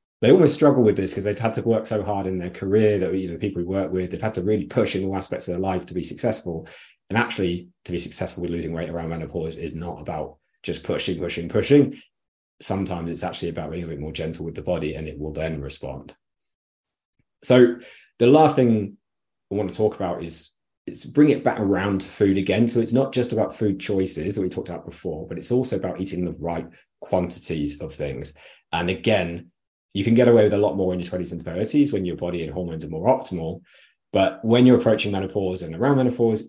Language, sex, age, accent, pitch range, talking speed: English, male, 30-49, British, 85-110 Hz, 230 wpm